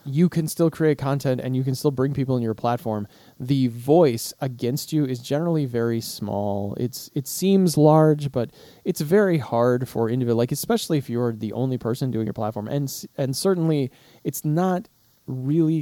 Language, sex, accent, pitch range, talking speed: English, male, American, 120-150 Hz, 180 wpm